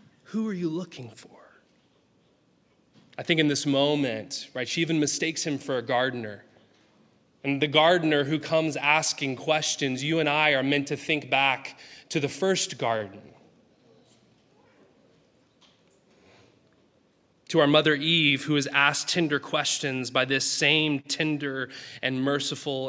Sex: male